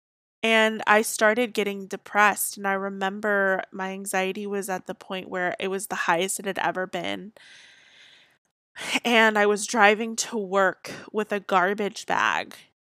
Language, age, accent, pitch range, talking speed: English, 20-39, American, 190-225 Hz, 155 wpm